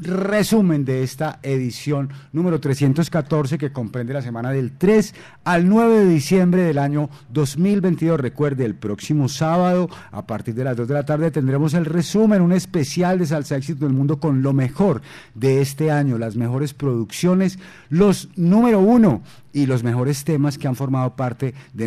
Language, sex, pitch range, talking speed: Spanish, male, 135-175 Hz, 170 wpm